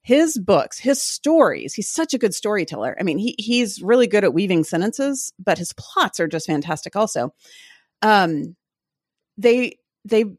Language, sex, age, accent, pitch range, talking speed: English, female, 30-49, American, 160-240 Hz, 160 wpm